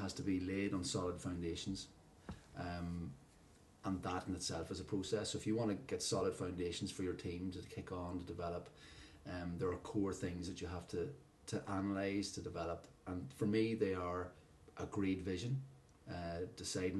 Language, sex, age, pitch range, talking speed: English, male, 30-49, 90-105 Hz, 190 wpm